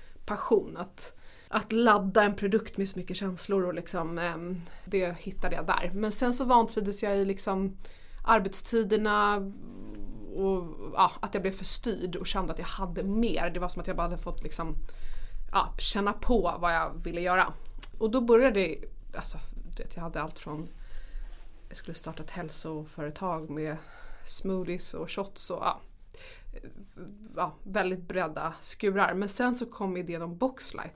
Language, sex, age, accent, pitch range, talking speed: English, female, 20-39, Swedish, 175-205 Hz, 145 wpm